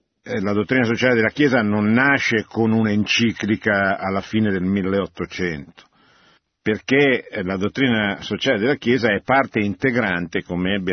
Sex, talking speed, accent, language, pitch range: male, 130 wpm, native, Italian, 95-130 Hz